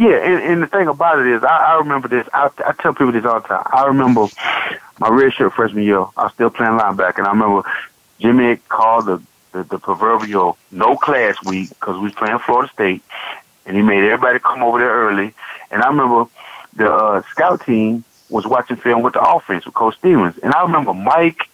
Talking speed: 210 wpm